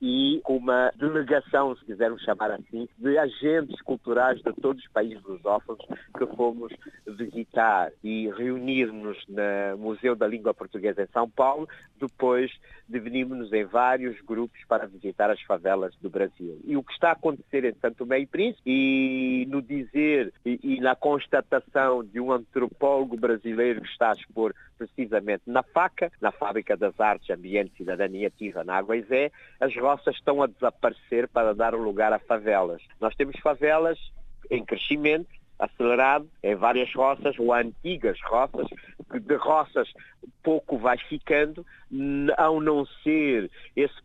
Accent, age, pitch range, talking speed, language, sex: Brazilian, 50-69, 115-145 Hz, 145 wpm, Portuguese, male